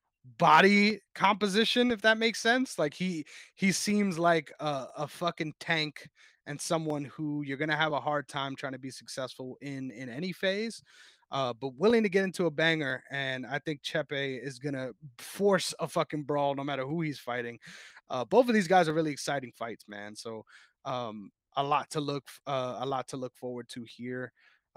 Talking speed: 190 wpm